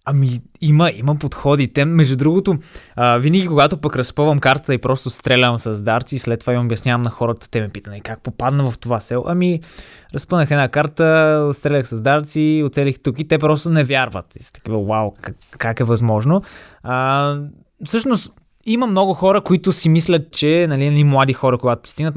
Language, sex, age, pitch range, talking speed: Bulgarian, male, 20-39, 125-170 Hz, 185 wpm